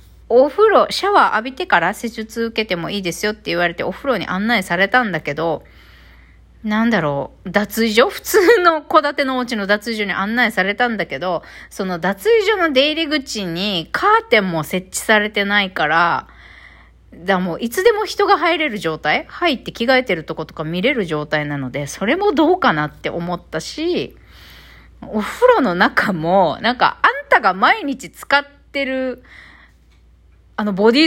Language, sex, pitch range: Japanese, female, 175-260 Hz